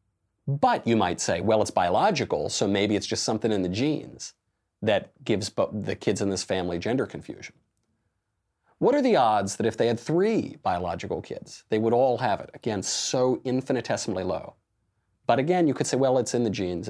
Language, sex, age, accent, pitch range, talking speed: English, male, 30-49, American, 100-160 Hz, 190 wpm